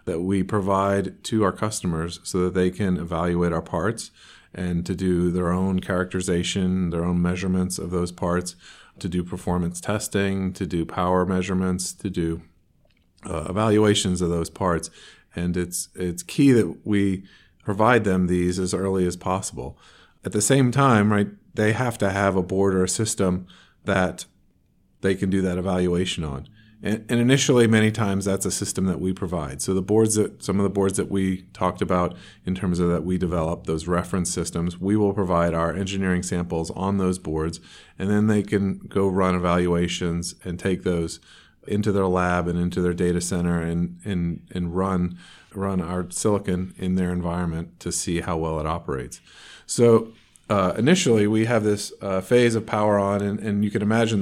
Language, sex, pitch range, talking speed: English, male, 90-100 Hz, 180 wpm